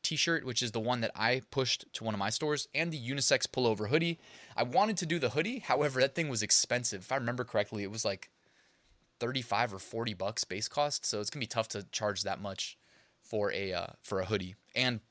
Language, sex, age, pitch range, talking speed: English, male, 20-39, 110-135 Hz, 230 wpm